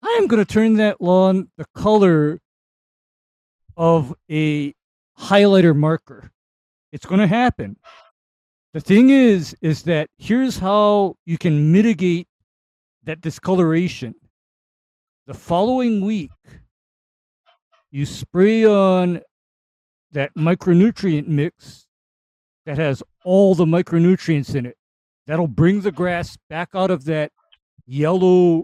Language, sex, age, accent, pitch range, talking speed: English, male, 50-69, American, 145-195 Hz, 115 wpm